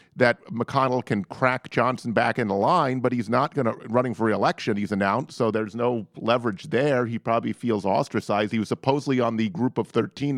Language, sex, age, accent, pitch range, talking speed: English, male, 50-69, American, 105-135 Hz, 200 wpm